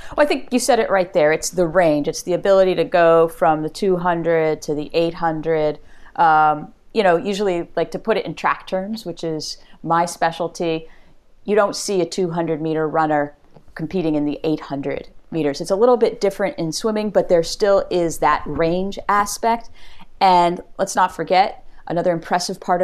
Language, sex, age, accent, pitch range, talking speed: English, female, 30-49, American, 160-205 Hz, 185 wpm